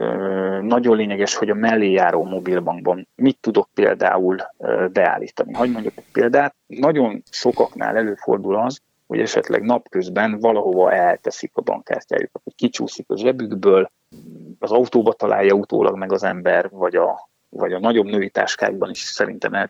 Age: 30-49